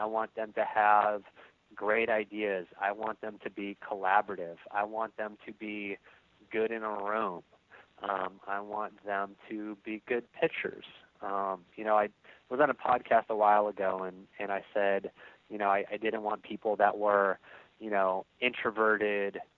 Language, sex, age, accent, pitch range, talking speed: English, male, 30-49, American, 105-125 Hz, 175 wpm